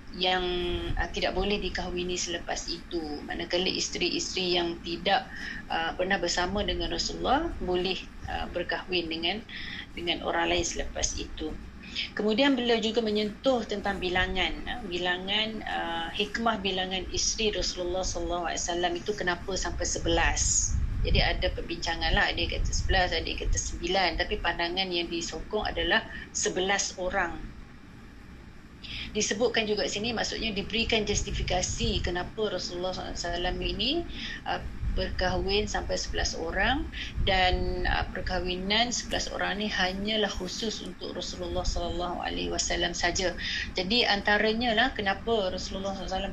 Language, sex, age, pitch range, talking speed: Malay, female, 30-49, 175-215 Hz, 120 wpm